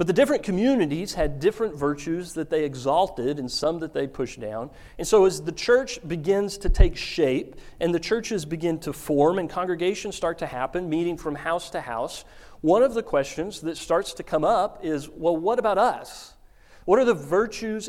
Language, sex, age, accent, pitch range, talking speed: English, male, 40-59, American, 145-195 Hz, 200 wpm